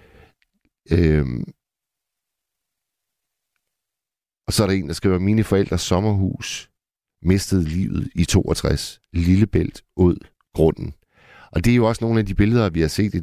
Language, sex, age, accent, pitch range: Danish, male, 60-79, native, 80-100 Hz